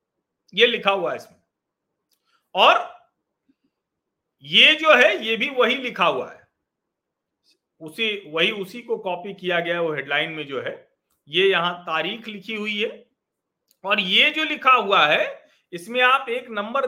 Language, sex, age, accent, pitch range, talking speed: Hindi, male, 50-69, native, 175-285 Hz, 155 wpm